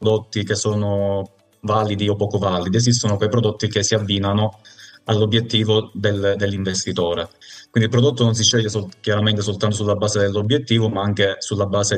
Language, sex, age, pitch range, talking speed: Italian, male, 20-39, 95-110 Hz, 150 wpm